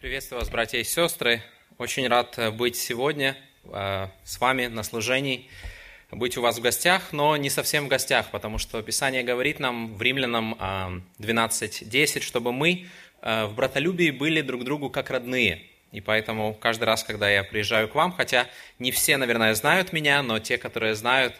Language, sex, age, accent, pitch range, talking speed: Russian, male, 20-39, native, 110-135 Hz, 165 wpm